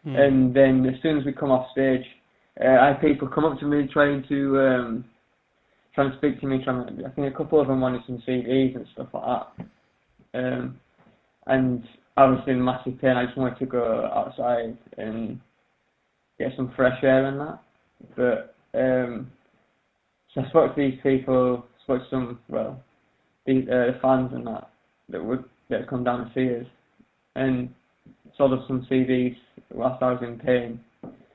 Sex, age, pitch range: male, 20-39, 125-135 Hz